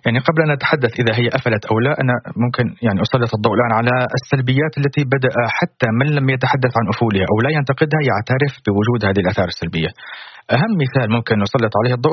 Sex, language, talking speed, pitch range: male, Arabic, 195 wpm, 110-140 Hz